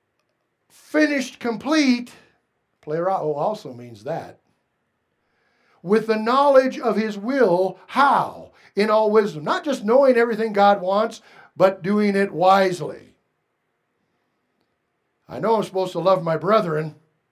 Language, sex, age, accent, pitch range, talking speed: English, male, 60-79, American, 170-235 Hz, 120 wpm